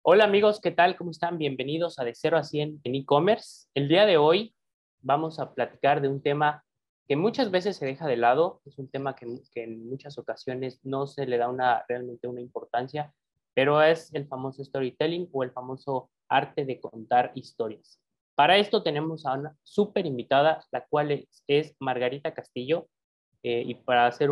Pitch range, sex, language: 125-160 Hz, male, Spanish